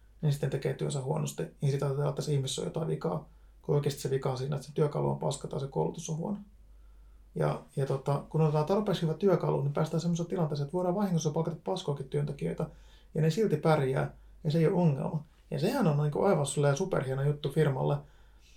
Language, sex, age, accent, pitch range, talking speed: Finnish, male, 30-49, native, 140-170 Hz, 205 wpm